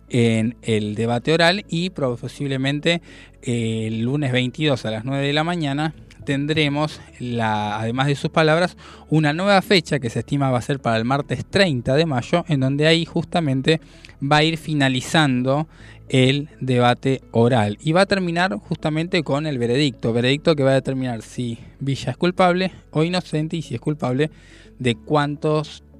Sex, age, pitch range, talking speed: male, 20-39, 120-155 Hz, 165 wpm